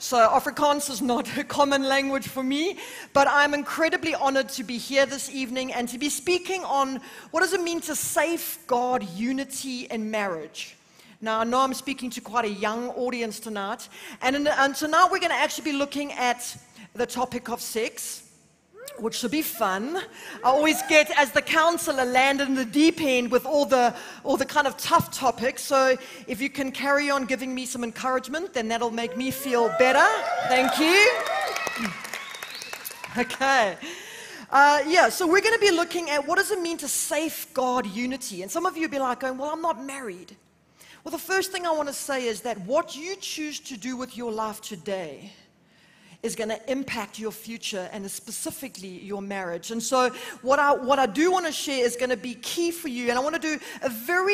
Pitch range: 235-305 Hz